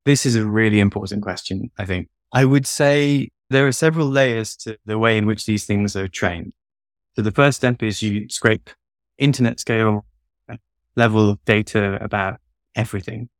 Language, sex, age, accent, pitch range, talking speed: English, male, 20-39, British, 100-120 Hz, 170 wpm